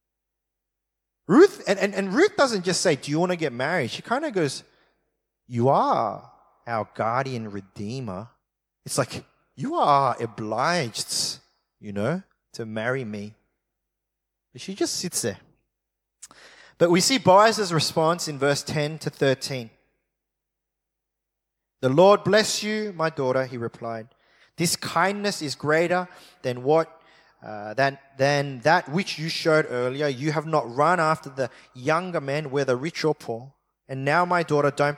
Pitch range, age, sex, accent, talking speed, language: 130-180 Hz, 30-49, male, Australian, 150 wpm, English